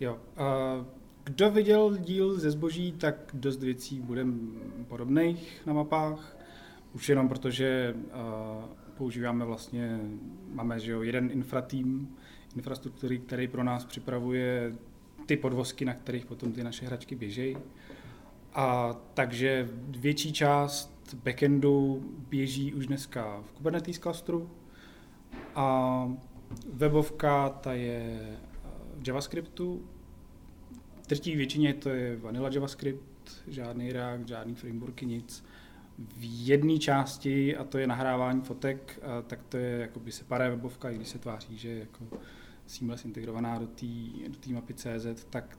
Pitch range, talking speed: 120-140 Hz, 120 wpm